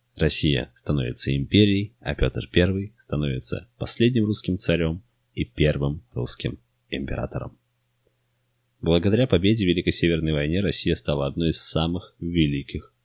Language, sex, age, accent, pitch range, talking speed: Russian, male, 20-39, native, 75-95 Hz, 120 wpm